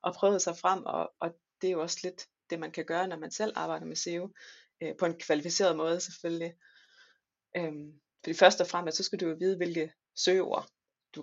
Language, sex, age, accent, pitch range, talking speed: Danish, female, 30-49, native, 165-195 Hz, 205 wpm